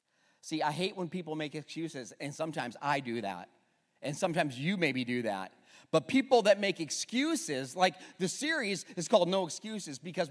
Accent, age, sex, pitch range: American, 40-59, male, 160-245 Hz